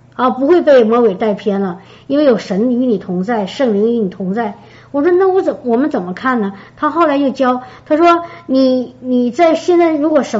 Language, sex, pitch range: Chinese, male, 230-310 Hz